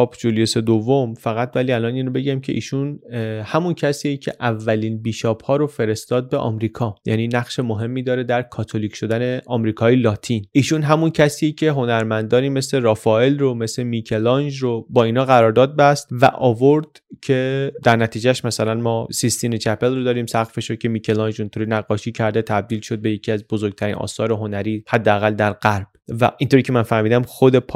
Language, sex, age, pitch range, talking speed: Persian, male, 20-39, 110-140 Hz, 170 wpm